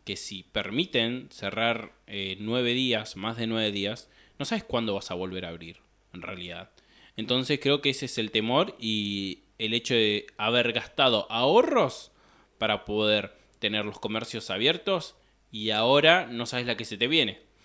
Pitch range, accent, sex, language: 115-150 Hz, Argentinian, male, Spanish